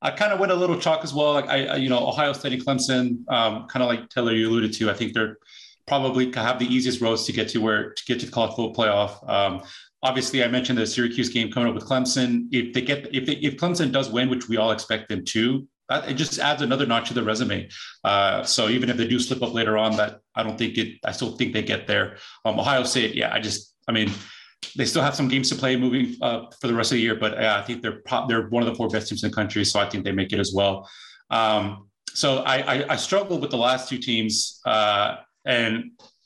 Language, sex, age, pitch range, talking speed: English, male, 30-49, 110-130 Hz, 260 wpm